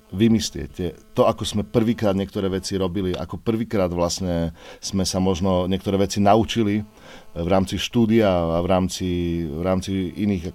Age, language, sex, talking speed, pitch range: 40-59, Slovak, male, 150 wpm, 90-105 Hz